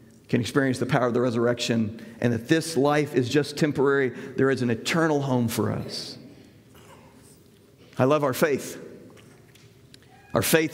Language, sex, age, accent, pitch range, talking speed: English, male, 40-59, American, 130-160 Hz, 150 wpm